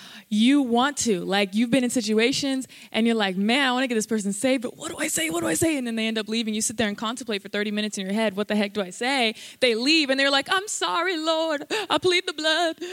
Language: English